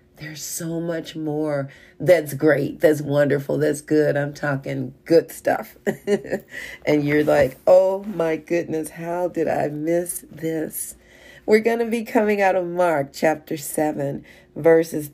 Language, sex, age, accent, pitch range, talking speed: English, female, 40-59, American, 145-170 Hz, 145 wpm